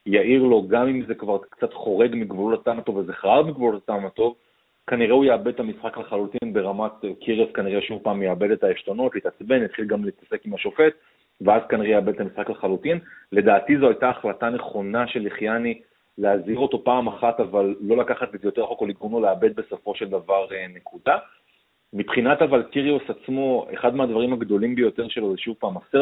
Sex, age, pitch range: male, 30-49, 105-140 Hz